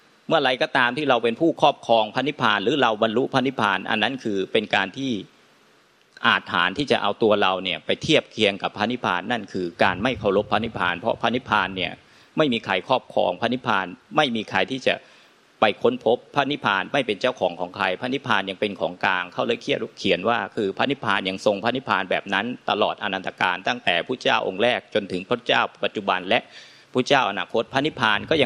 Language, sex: Thai, male